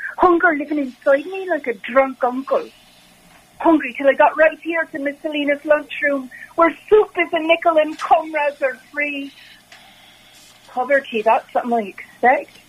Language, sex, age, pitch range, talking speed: English, female, 40-59, 225-310 Hz, 150 wpm